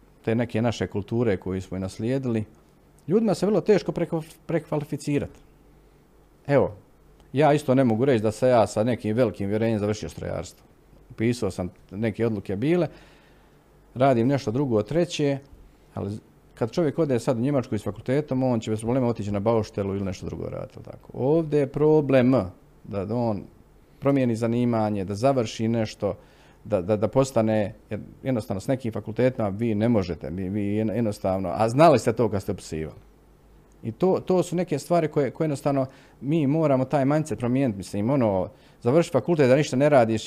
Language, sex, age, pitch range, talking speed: Croatian, male, 40-59, 105-135 Hz, 165 wpm